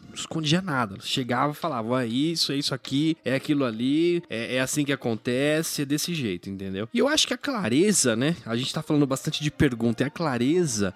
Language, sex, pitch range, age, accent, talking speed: Portuguese, male, 125-195 Hz, 20-39, Brazilian, 215 wpm